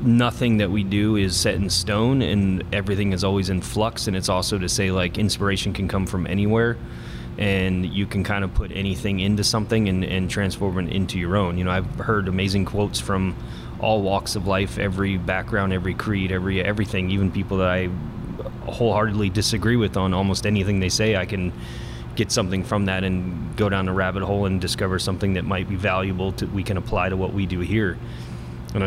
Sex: male